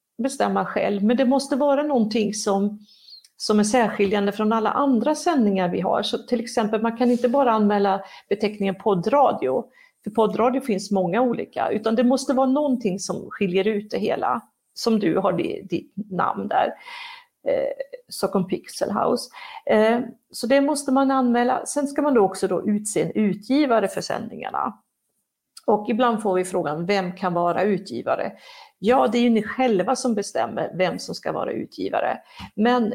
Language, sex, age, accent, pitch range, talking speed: Swedish, female, 50-69, native, 195-265 Hz, 160 wpm